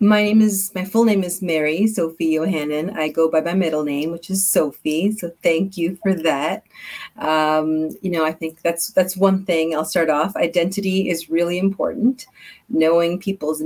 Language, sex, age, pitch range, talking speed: English, female, 30-49, 160-195 Hz, 185 wpm